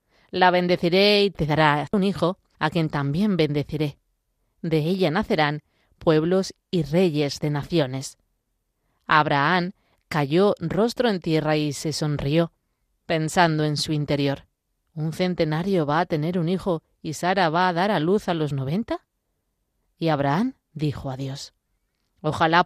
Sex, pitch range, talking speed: female, 150-185 Hz, 145 wpm